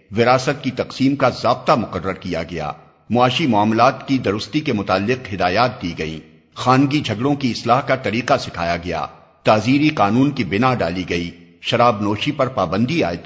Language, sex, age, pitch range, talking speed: Urdu, male, 50-69, 95-135 Hz, 165 wpm